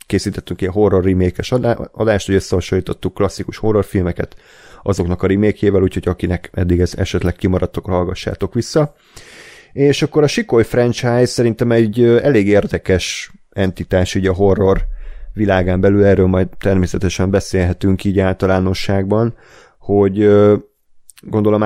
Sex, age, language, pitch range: male, 30-49, Hungarian, 90-110 Hz